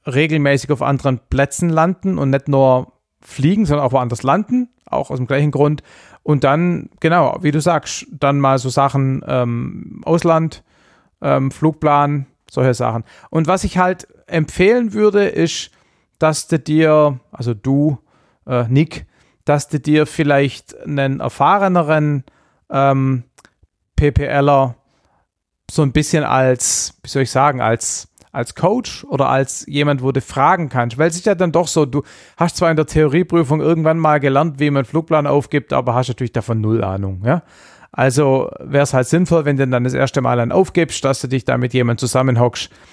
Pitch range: 125-155 Hz